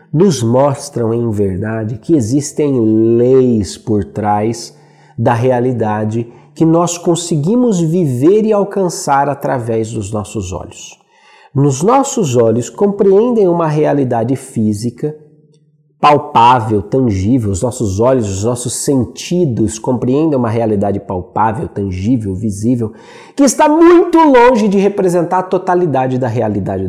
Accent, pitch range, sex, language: Brazilian, 115-185 Hz, male, Portuguese